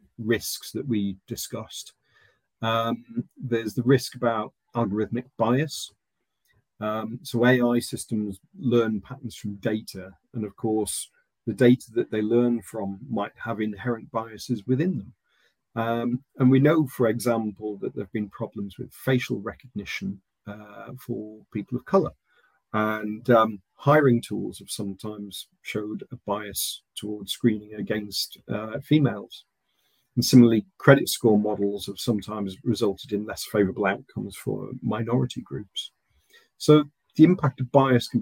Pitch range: 105-125 Hz